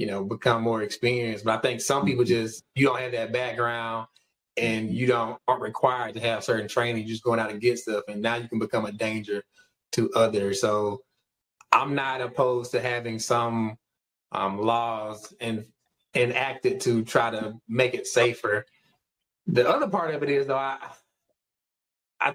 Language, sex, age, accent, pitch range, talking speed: English, male, 20-39, American, 110-130 Hz, 180 wpm